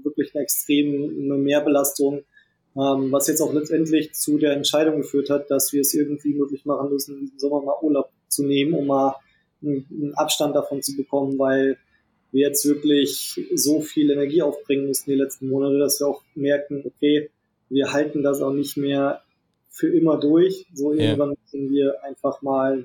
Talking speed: 170 wpm